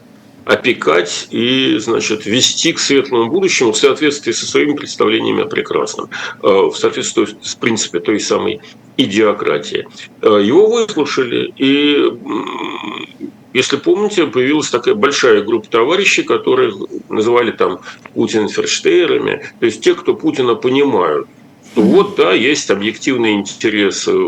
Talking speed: 120 wpm